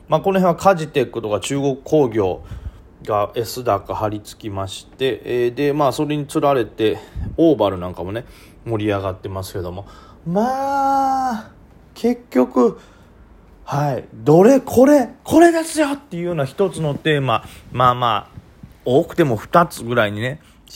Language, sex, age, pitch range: Japanese, male, 30-49, 100-135 Hz